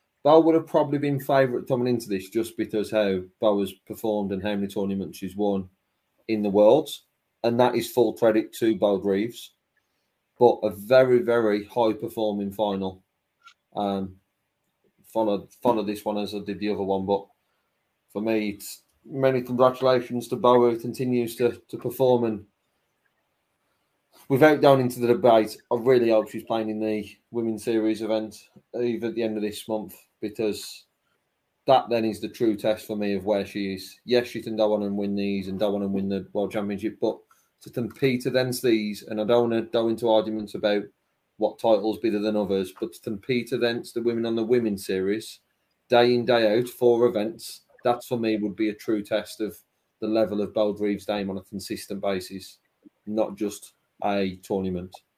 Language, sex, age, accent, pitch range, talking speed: English, male, 30-49, British, 100-120 Hz, 185 wpm